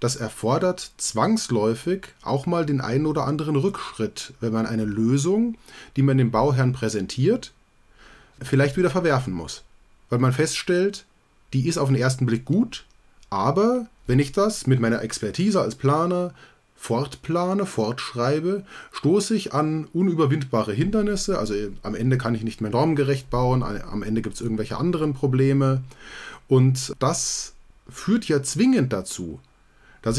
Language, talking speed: German, 145 wpm